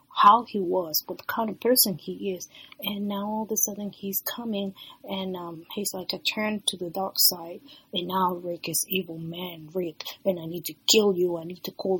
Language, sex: English, female